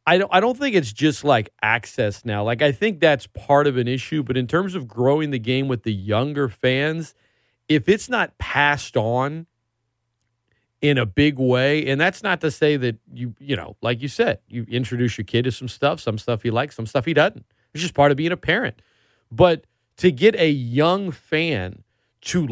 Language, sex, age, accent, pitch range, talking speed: English, male, 40-59, American, 120-155 Hz, 205 wpm